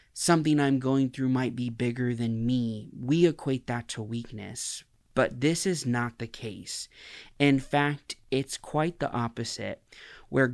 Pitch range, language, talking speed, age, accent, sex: 115-130 Hz, English, 155 wpm, 20-39, American, male